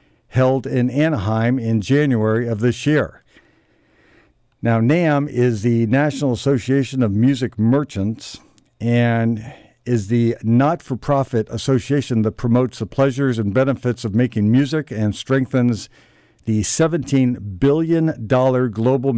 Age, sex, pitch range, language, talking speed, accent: 60-79, male, 115-140 Hz, English, 120 wpm, American